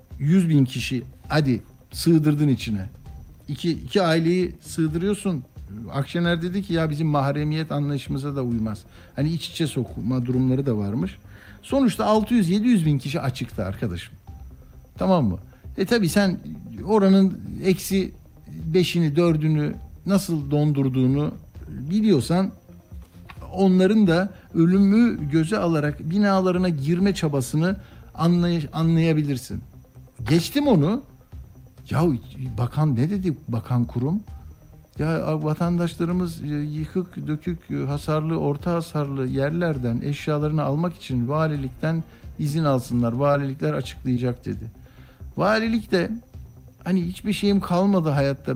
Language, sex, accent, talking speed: Turkish, male, native, 110 wpm